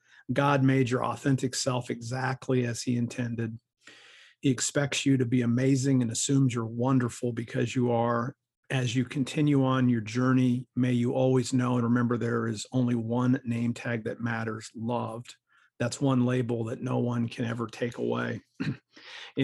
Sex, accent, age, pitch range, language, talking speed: male, American, 50-69, 120-130 Hz, English, 165 wpm